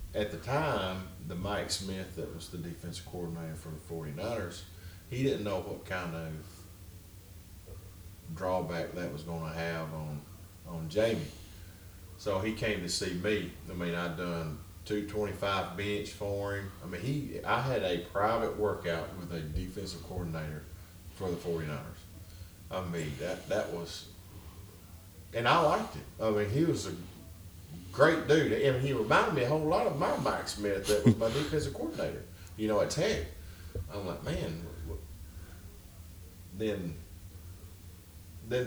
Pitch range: 85-95 Hz